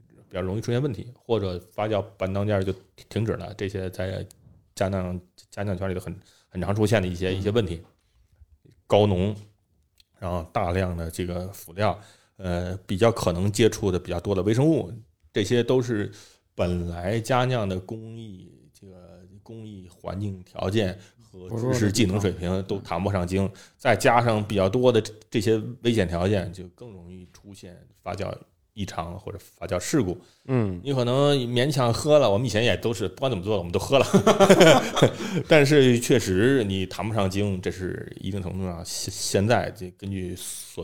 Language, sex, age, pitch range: Chinese, male, 20-39, 90-115 Hz